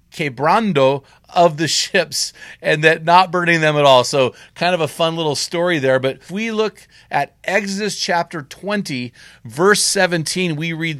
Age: 40-59